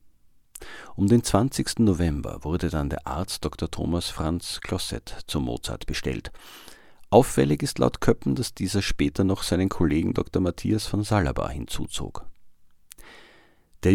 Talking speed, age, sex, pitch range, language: 135 wpm, 50-69, male, 75-105 Hz, German